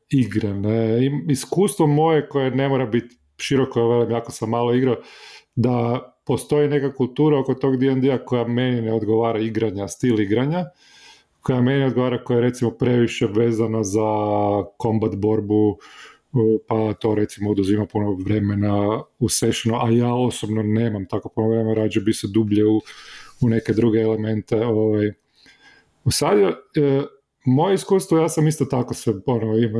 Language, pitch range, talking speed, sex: Croatian, 110-135 Hz, 150 wpm, male